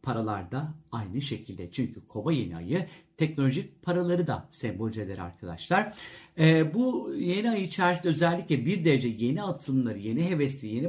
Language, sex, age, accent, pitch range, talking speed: Turkish, male, 50-69, native, 130-175 Hz, 145 wpm